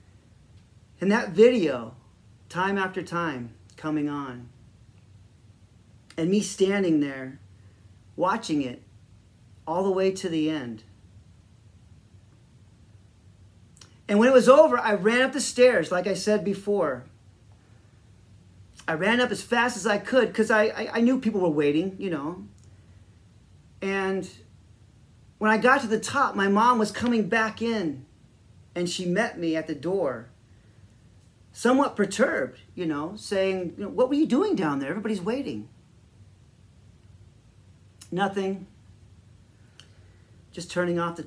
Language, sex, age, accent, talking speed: English, male, 40-59, American, 130 wpm